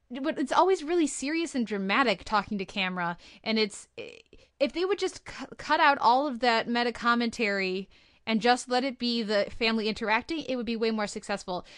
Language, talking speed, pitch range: English, 195 wpm, 205-250 Hz